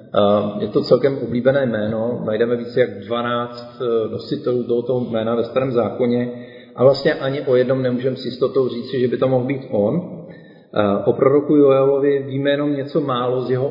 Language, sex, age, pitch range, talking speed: Czech, male, 40-59, 120-145 Hz, 175 wpm